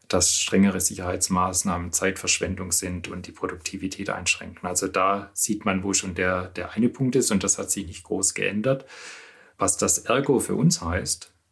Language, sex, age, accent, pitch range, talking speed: German, male, 40-59, German, 95-105 Hz, 170 wpm